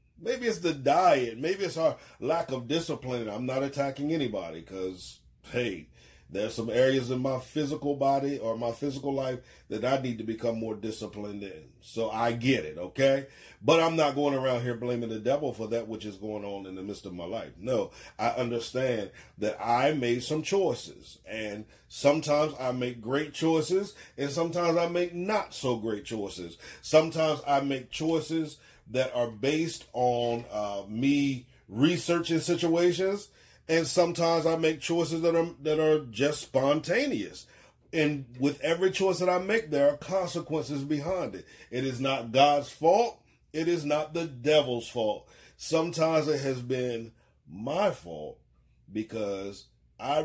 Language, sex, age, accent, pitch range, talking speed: English, male, 40-59, American, 110-155 Hz, 160 wpm